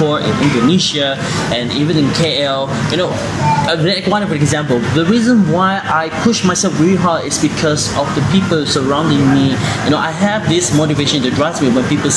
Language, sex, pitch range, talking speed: English, male, 140-180 Hz, 180 wpm